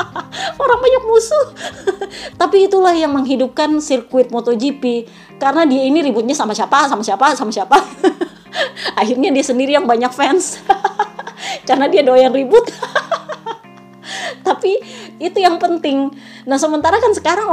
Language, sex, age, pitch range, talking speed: Indonesian, female, 20-39, 250-350 Hz, 125 wpm